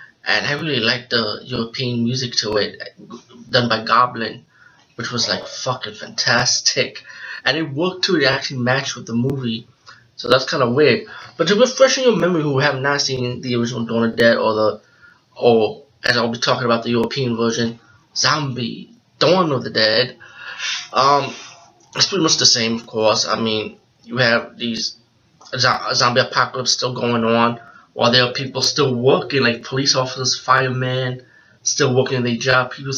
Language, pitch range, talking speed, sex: English, 115-135 Hz, 175 wpm, male